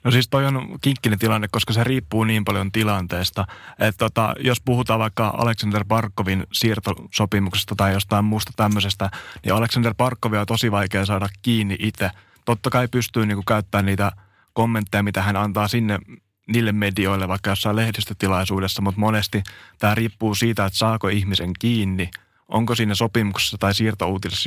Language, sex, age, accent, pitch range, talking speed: Finnish, male, 20-39, native, 100-110 Hz, 155 wpm